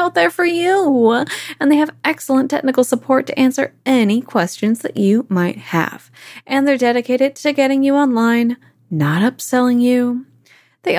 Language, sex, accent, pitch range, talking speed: English, female, American, 200-275 Hz, 160 wpm